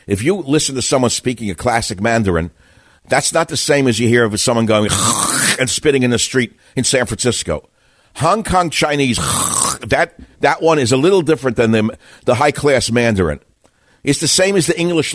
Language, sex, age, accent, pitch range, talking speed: English, male, 60-79, American, 95-140 Hz, 190 wpm